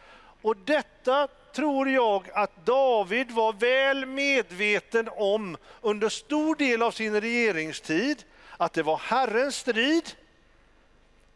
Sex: male